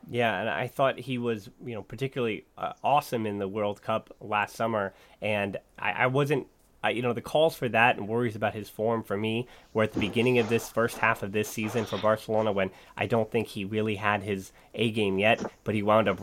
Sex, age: male, 30-49